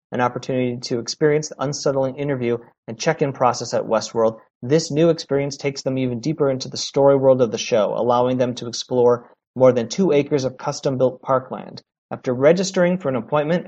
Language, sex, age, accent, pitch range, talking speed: English, male, 40-59, American, 125-150 Hz, 185 wpm